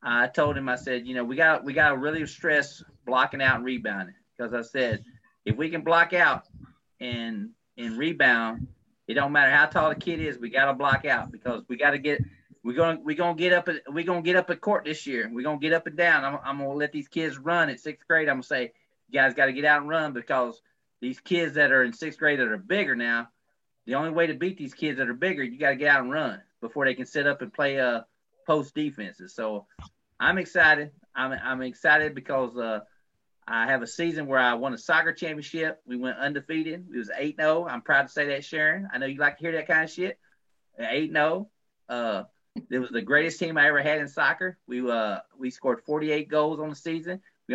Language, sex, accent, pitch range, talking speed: English, male, American, 125-160 Hz, 240 wpm